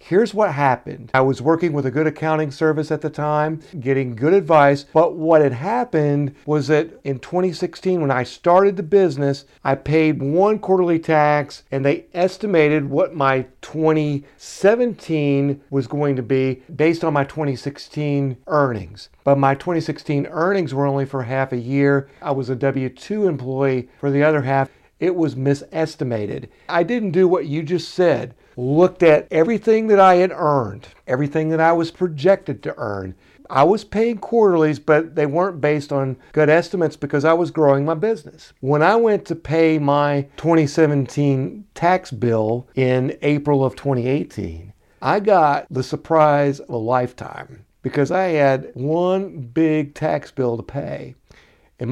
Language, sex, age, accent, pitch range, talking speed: English, male, 50-69, American, 135-165 Hz, 160 wpm